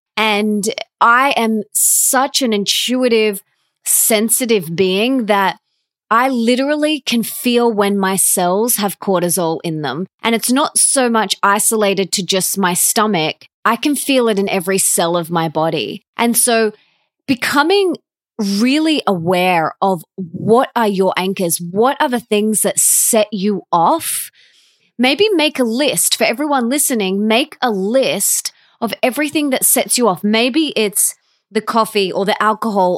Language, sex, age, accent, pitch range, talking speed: English, female, 20-39, Australian, 200-255 Hz, 145 wpm